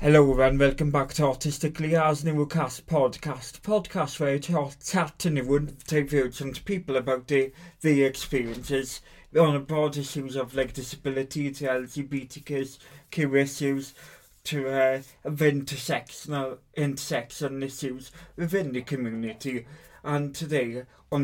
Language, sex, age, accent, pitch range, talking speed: English, male, 30-49, British, 130-145 Hz, 125 wpm